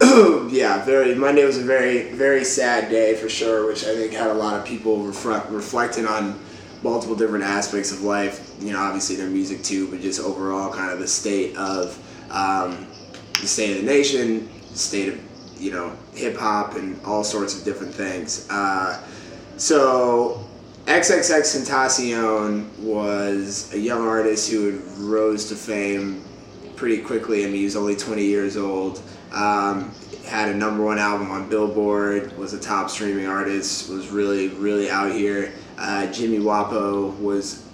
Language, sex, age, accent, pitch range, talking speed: English, male, 20-39, American, 100-110 Hz, 160 wpm